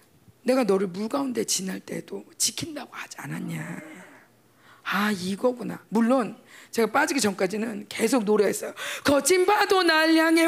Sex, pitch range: female, 210-300 Hz